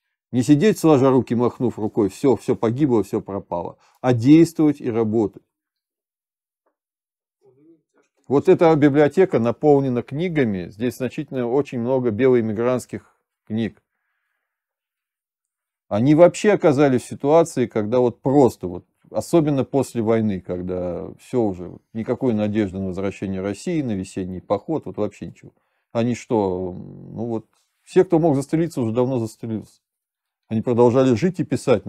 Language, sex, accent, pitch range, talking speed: Russian, male, native, 100-140 Hz, 130 wpm